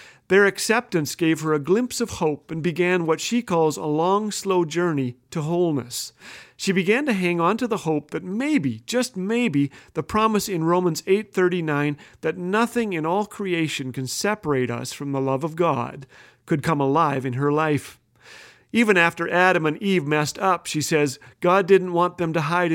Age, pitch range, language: 40-59, 145-195 Hz, English